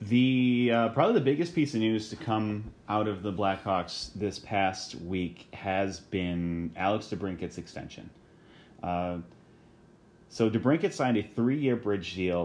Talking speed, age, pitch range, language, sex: 145 wpm, 30-49, 90-110 Hz, English, male